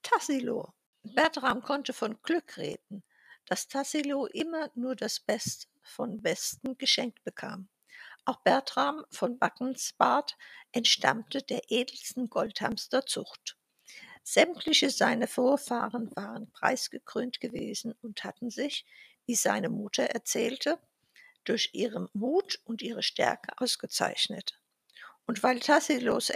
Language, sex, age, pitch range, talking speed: German, female, 60-79, 240-305 Hz, 105 wpm